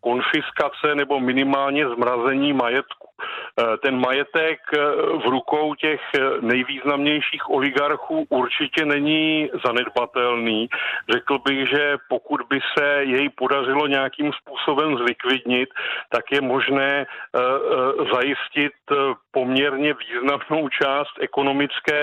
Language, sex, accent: Czech, male, native